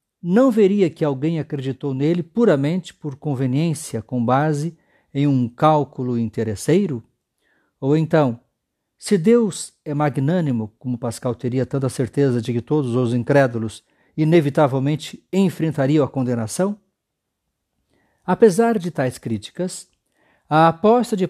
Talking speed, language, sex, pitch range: 120 wpm, Portuguese, male, 130-185 Hz